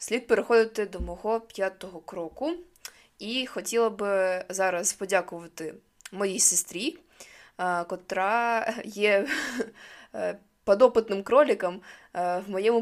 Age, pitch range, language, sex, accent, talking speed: 20-39, 180-235 Hz, Ukrainian, female, native, 90 wpm